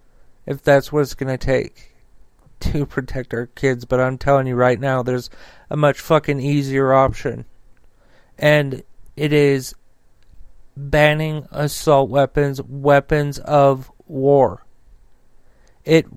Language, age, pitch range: English, 40-59, 140-165 Hz